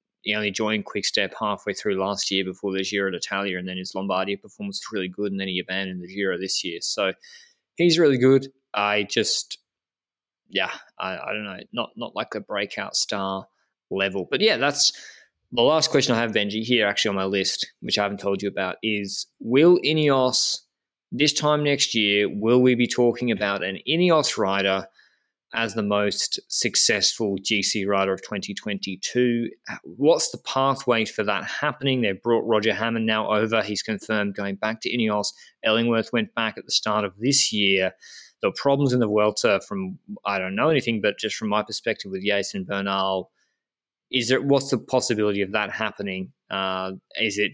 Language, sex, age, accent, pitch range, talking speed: English, male, 20-39, Australian, 100-125 Hz, 185 wpm